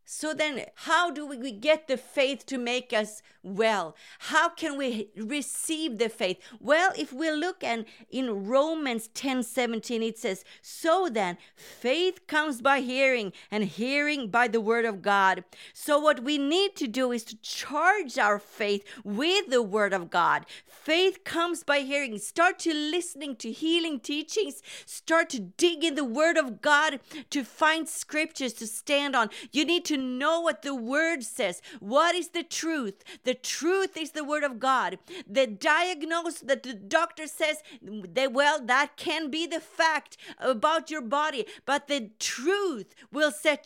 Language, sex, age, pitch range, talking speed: English, female, 40-59, 250-320 Hz, 170 wpm